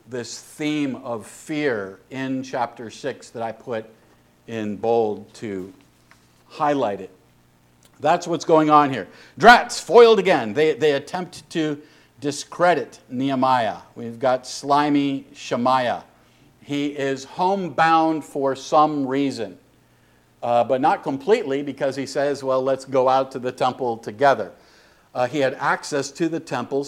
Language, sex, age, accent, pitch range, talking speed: English, male, 50-69, American, 120-150 Hz, 135 wpm